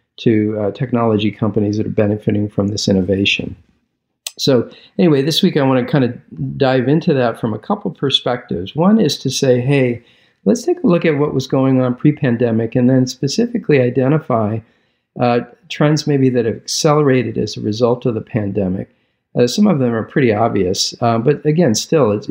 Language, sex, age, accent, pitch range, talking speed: English, male, 50-69, American, 110-135 Hz, 190 wpm